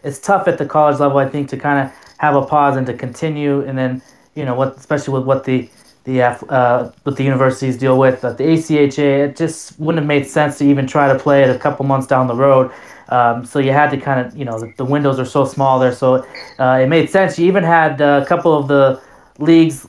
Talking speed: 255 wpm